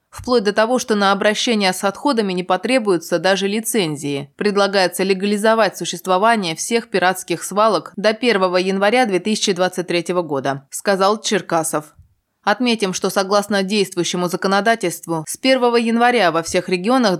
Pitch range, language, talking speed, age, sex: 175-220 Hz, Russian, 125 wpm, 20-39, female